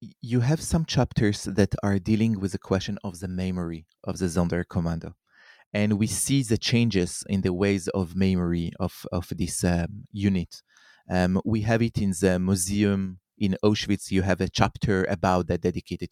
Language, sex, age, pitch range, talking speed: English, male, 30-49, 95-115 Hz, 175 wpm